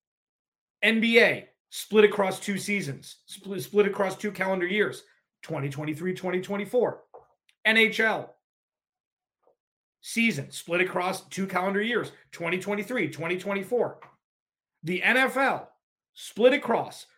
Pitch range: 170-230 Hz